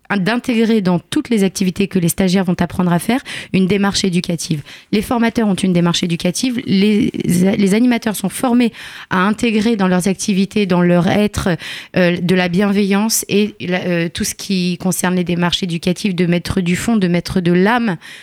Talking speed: 180 wpm